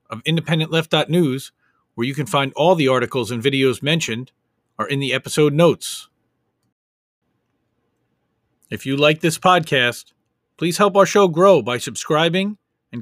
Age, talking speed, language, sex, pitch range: 40-59, 140 wpm, English, male, 135-170 Hz